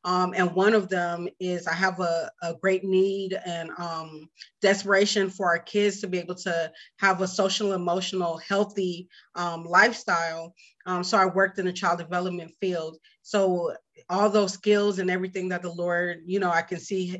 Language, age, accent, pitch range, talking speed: English, 30-49, American, 175-200 Hz, 180 wpm